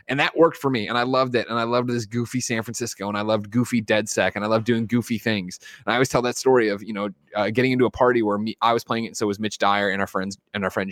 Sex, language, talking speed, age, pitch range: male, English, 320 wpm, 20-39, 105-130 Hz